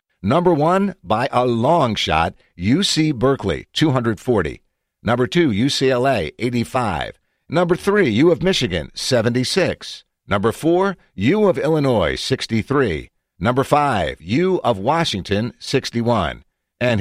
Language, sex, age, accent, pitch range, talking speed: English, male, 60-79, American, 100-150 Hz, 115 wpm